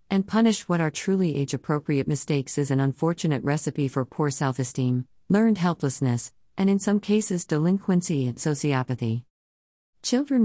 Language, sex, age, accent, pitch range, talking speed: English, female, 40-59, American, 130-165 Hz, 140 wpm